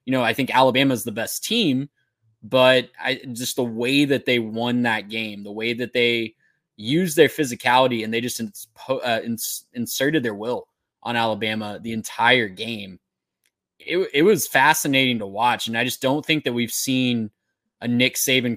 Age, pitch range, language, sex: 20-39, 115-135 Hz, English, male